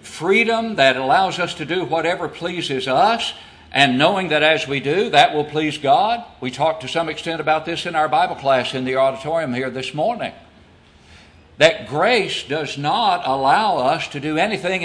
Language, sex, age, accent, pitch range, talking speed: English, male, 60-79, American, 135-190 Hz, 180 wpm